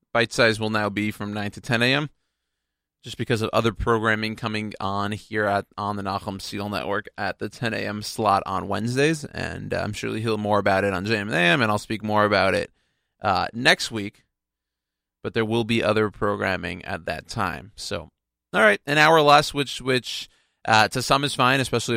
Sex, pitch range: male, 100-120 Hz